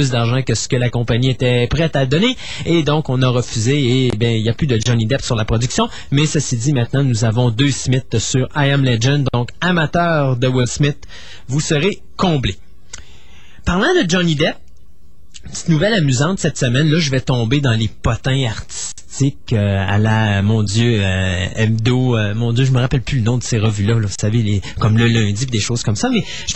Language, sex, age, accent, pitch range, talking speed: French, male, 30-49, Canadian, 120-165 Hz, 215 wpm